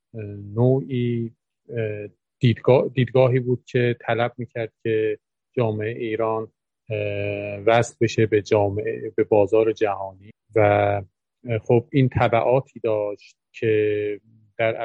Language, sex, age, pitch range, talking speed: Persian, male, 40-59, 105-115 Hz, 95 wpm